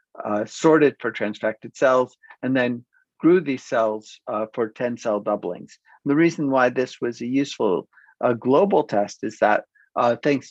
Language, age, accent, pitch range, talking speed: English, 50-69, American, 110-135 Hz, 160 wpm